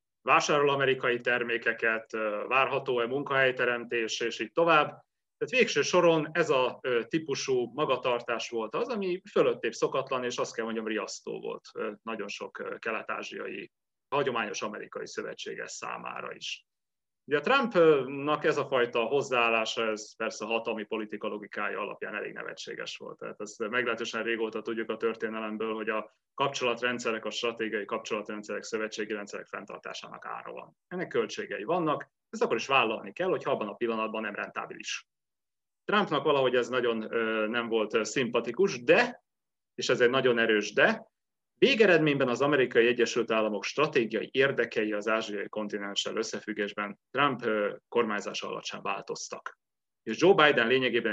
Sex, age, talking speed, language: male, 30-49, 135 wpm, Hungarian